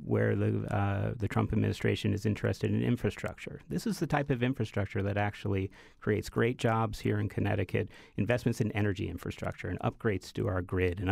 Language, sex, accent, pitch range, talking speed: English, male, American, 100-115 Hz, 185 wpm